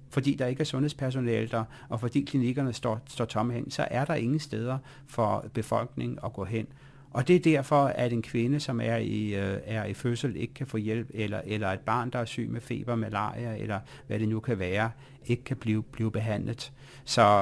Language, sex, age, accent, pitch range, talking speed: Danish, male, 60-79, native, 110-135 Hz, 215 wpm